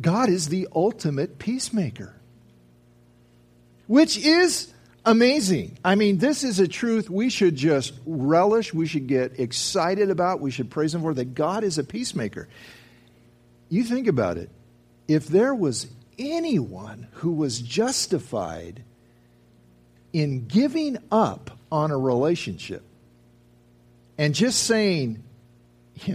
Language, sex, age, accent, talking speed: English, male, 50-69, American, 125 wpm